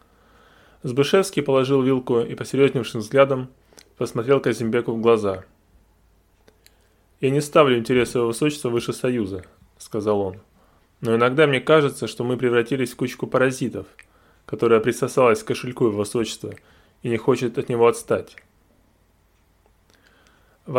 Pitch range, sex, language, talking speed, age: 100-135 Hz, male, Russian, 125 wpm, 20-39